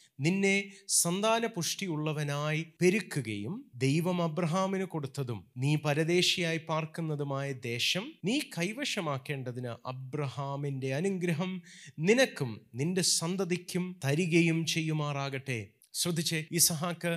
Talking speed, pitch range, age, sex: 75 wpm, 140-185 Hz, 30-49, male